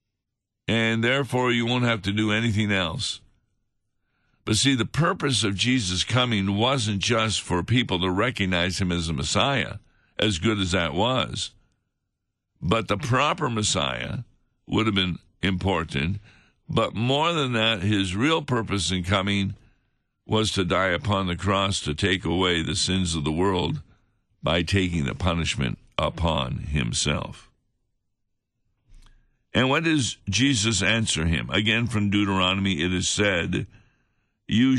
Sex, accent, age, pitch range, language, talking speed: male, American, 60-79, 95-115 Hz, English, 140 wpm